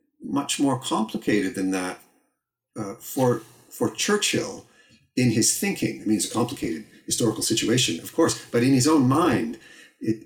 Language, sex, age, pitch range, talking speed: English, male, 40-59, 100-125 Hz, 160 wpm